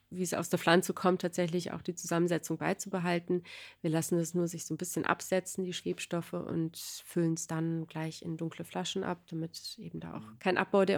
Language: German